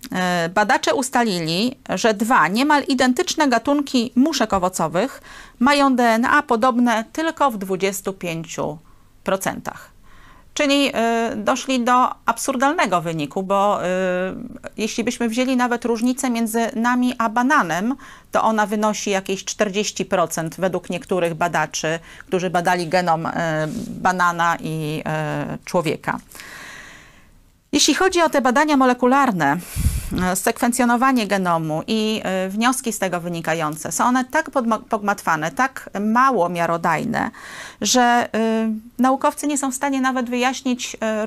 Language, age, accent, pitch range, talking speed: Polish, 40-59, native, 185-255 Hz, 110 wpm